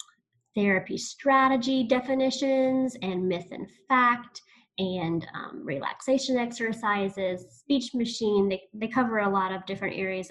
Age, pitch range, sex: 20-39, 190-240 Hz, female